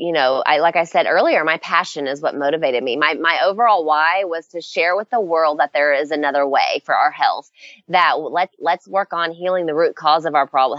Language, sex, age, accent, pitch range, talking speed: English, female, 20-39, American, 155-205 Hz, 240 wpm